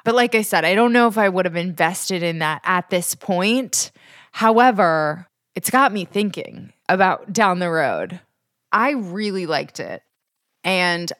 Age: 20-39